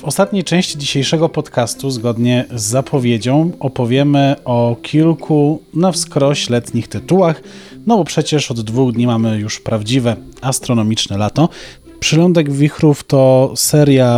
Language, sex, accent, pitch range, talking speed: Polish, male, native, 125-150 Hz, 125 wpm